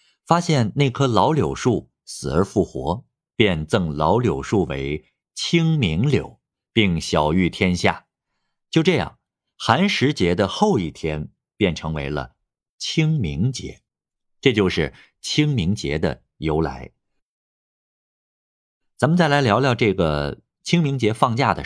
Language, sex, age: Chinese, male, 50-69